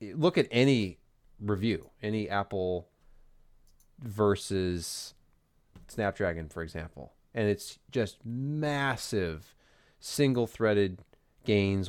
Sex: male